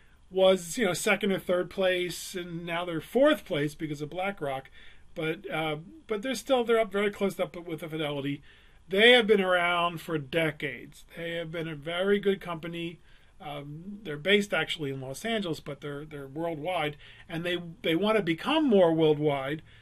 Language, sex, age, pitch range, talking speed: English, male, 40-59, 150-200 Hz, 180 wpm